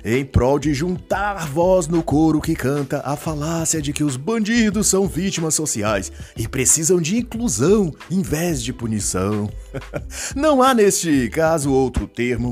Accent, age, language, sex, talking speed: Brazilian, 30-49, Portuguese, male, 155 wpm